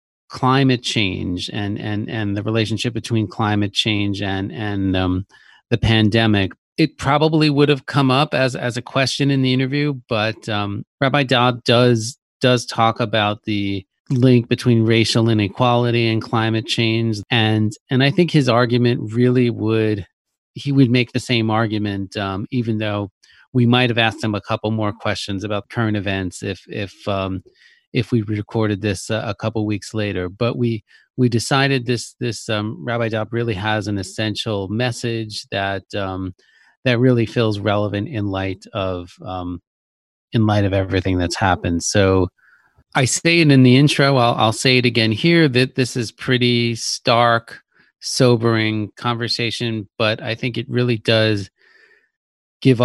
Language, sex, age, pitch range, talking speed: English, male, 30-49, 105-125 Hz, 160 wpm